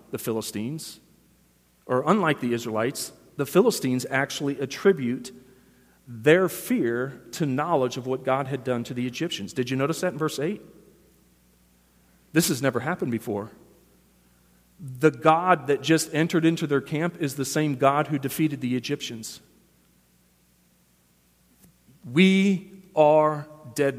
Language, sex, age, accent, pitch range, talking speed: English, male, 40-59, American, 125-180 Hz, 135 wpm